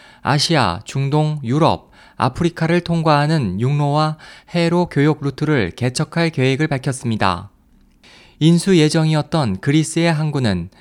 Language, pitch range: Korean, 130-170 Hz